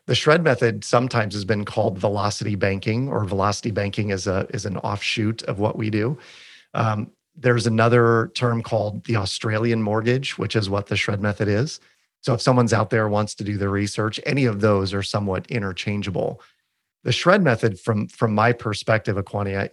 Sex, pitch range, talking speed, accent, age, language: male, 100-120 Hz, 185 wpm, American, 40-59, English